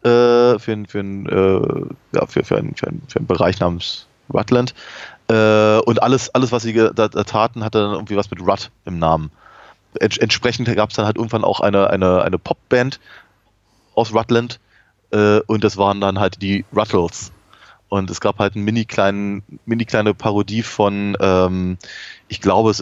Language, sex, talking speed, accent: German, male, 150 wpm, German